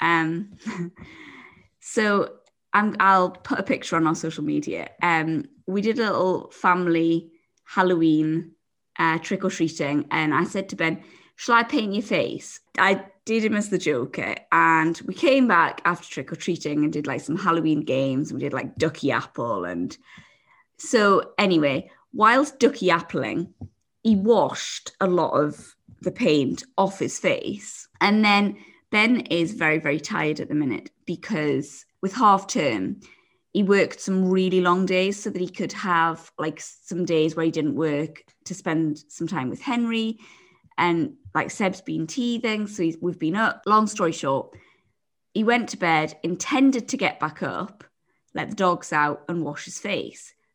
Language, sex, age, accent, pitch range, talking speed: English, female, 20-39, British, 160-215 Hz, 165 wpm